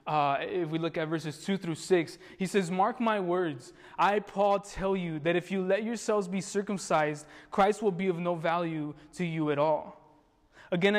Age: 20-39